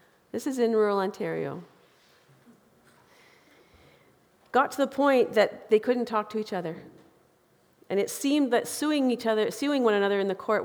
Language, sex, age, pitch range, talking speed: English, female, 40-59, 185-230 Hz, 165 wpm